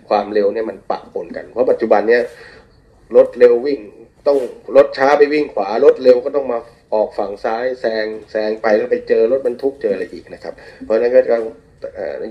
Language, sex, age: Thai, male, 30-49